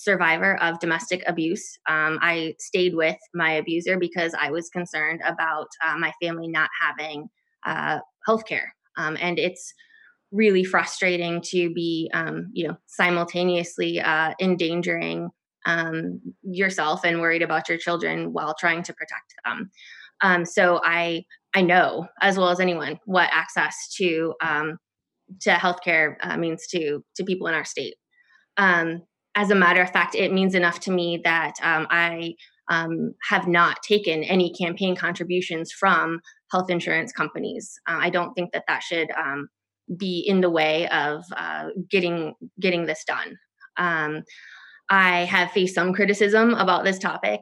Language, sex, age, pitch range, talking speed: English, female, 20-39, 165-190 Hz, 155 wpm